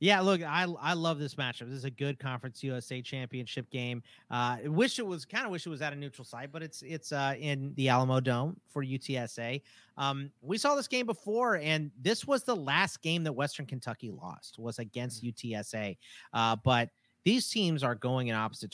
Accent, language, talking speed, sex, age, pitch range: American, English, 210 wpm, male, 30-49, 115-150 Hz